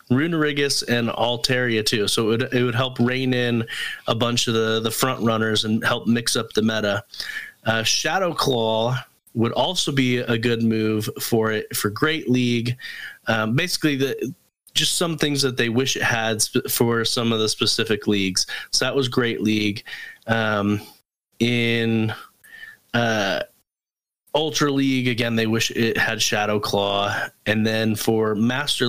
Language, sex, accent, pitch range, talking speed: English, male, American, 110-130 Hz, 160 wpm